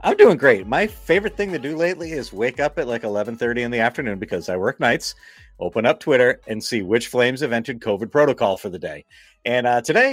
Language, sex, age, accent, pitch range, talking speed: English, male, 30-49, American, 110-140 Hz, 230 wpm